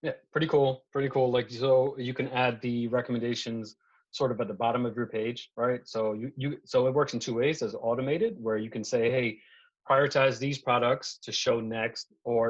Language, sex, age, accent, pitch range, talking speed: English, male, 30-49, American, 110-130 Hz, 210 wpm